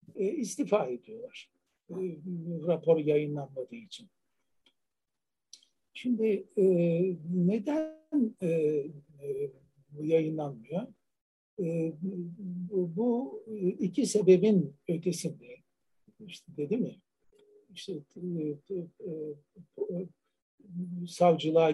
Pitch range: 160-200 Hz